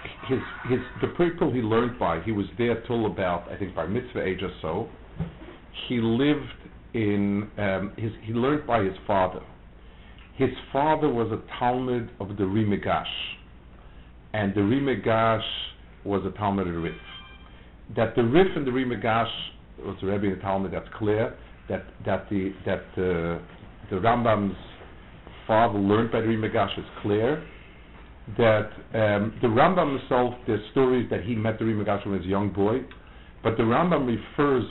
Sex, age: male, 50-69